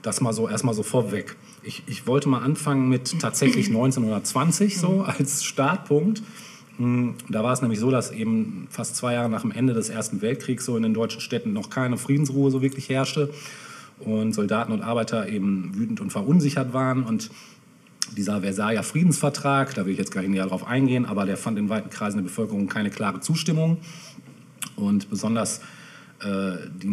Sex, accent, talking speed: male, German, 180 wpm